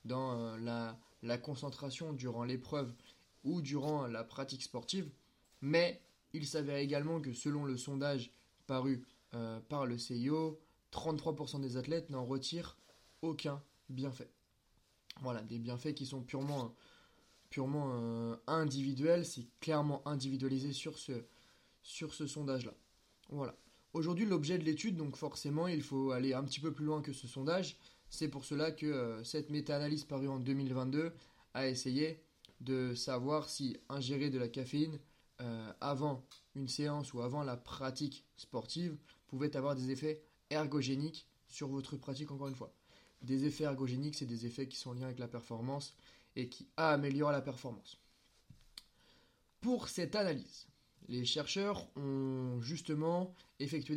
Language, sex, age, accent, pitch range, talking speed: French, male, 20-39, French, 130-155 Hz, 145 wpm